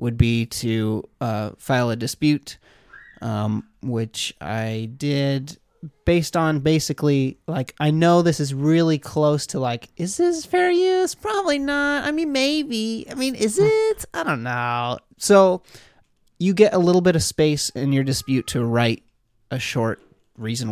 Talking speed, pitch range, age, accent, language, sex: 160 wpm, 115-170 Hz, 30-49, American, English, male